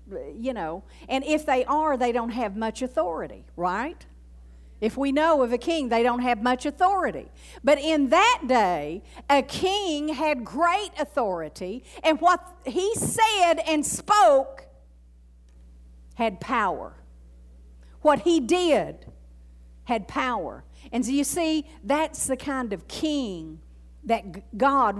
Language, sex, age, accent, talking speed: English, female, 50-69, American, 135 wpm